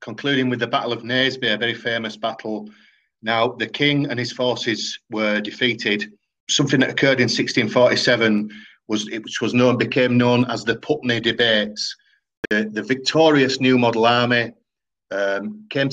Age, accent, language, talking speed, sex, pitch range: 40-59, British, English, 155 wpm, male, 110-130 Hz